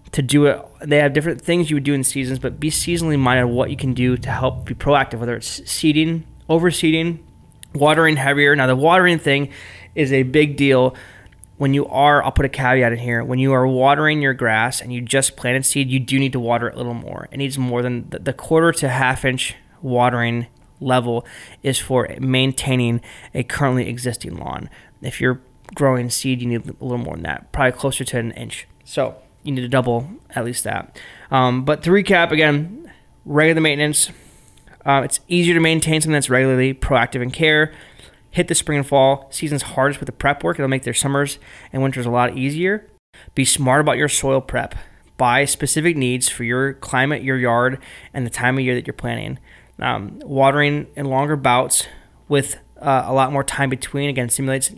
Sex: male